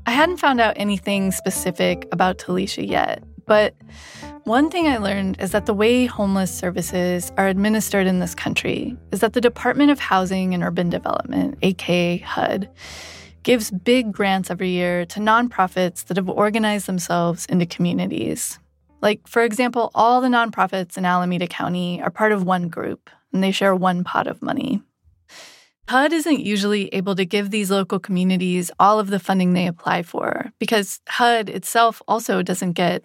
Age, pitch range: 20-39, 180-225 Hz